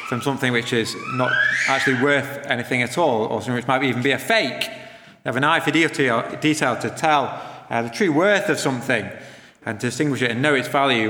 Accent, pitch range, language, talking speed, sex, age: British, 130-180 Hz, English, 210 wpm, male, 30-49